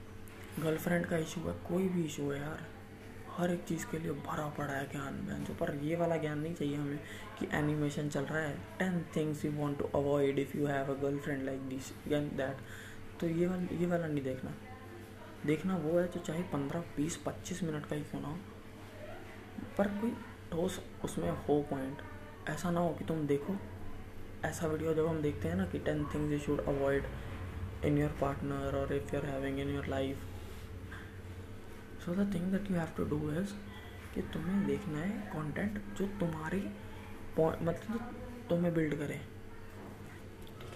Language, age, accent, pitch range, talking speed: Hindi, 20-39, native, 110-160 Hz, 180 wpm